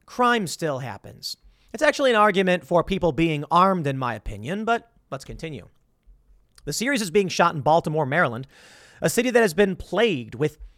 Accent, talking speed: American, 180 wpm